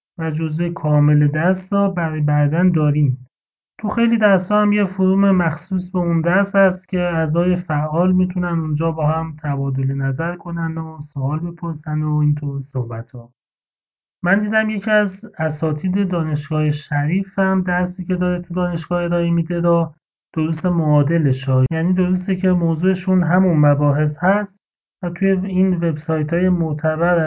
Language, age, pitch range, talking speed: Persian, 30-49, 150-185 Hz, 145 wpm